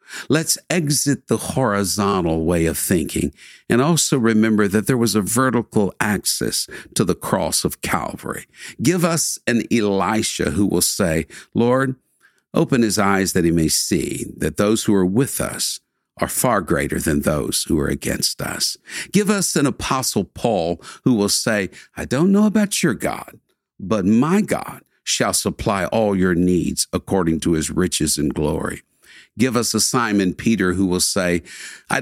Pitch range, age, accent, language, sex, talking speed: 95-130 Hz, 60-79, American, English, male, 165 wpm